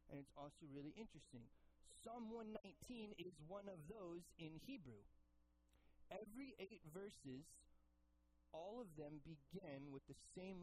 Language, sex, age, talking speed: English, male, 30-49, 130 wpm